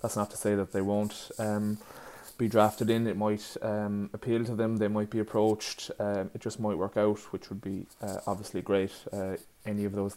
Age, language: 20-39, English